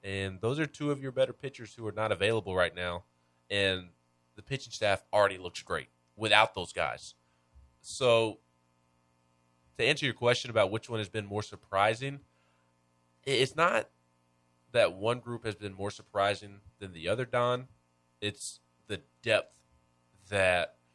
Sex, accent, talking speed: male, American, 150 wpm